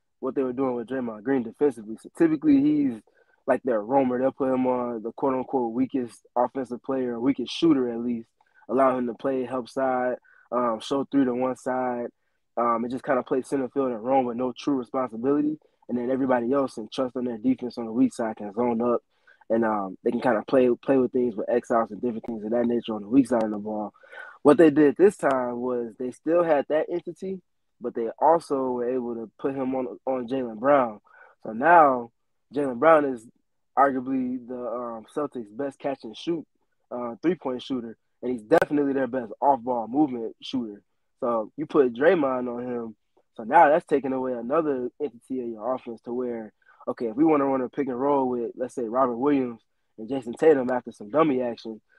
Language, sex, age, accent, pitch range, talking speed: English, male, 20-39, American, 120-140 Hz, 205 wpm